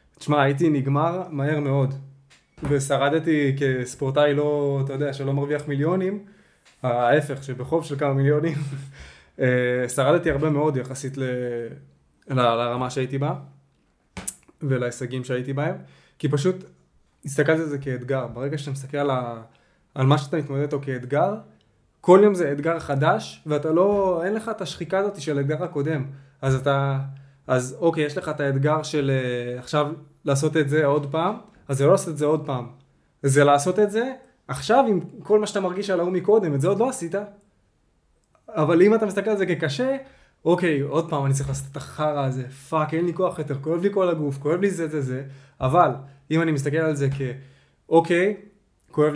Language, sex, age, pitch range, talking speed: Hebrew, male, 20-39, 135-170 Hz, 170 wpm